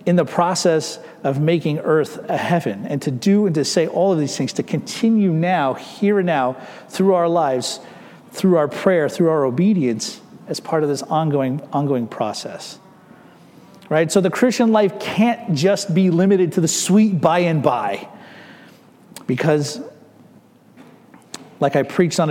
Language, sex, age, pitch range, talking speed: English, male, 40-59, 145-190 Hz, 160 wpm